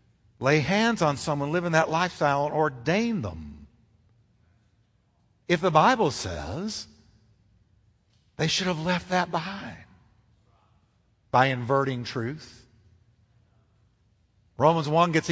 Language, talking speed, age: English, 100 wpm, 50-69